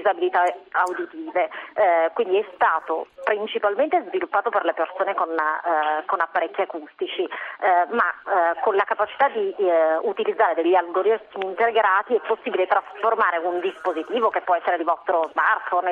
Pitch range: 175-235 Hz